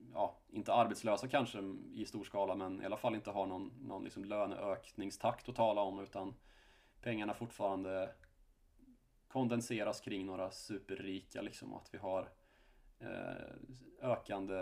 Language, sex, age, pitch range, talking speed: Swedish, male, 20-39, 95-115 Hz, 135 wpm